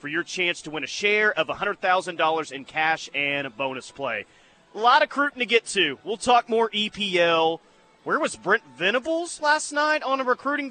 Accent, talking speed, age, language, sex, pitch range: American, 195 wpm, 30-49, English, male, 160-215 Hz